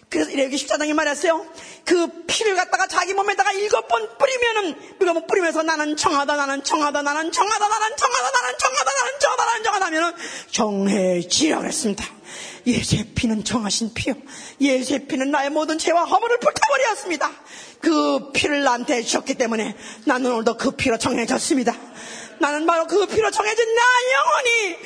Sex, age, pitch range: female, 30-49, 245-370 Hz